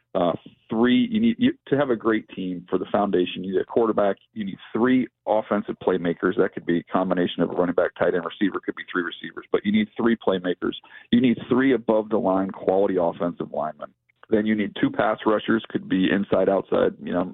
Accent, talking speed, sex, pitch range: American, 215 wpm, male, 95-145 Hz